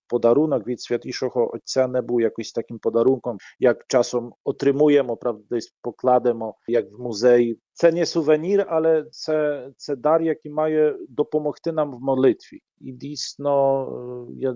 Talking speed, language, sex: 140 wpm, Ukrainian, male